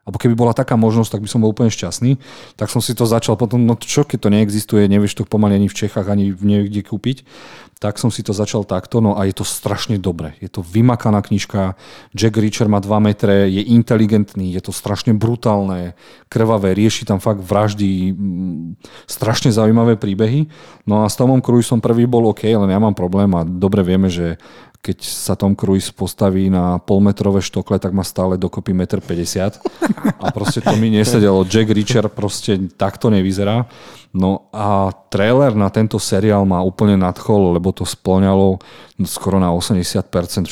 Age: 40-59